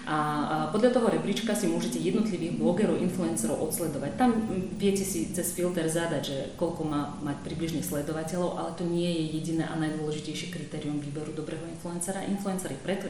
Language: Slovak